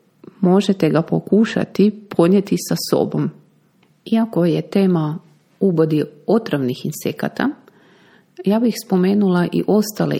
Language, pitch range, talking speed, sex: English, 170-210 Hz, 100 wpm, female